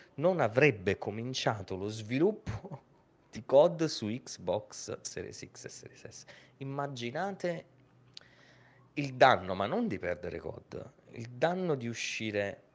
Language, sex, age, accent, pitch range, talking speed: Italian, male, 30-49, native, 85-130 Hz, 120 wpm